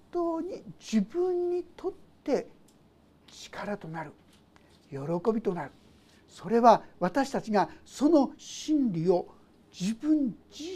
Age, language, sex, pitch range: 60-79, Japanese, male, 195-295 Hz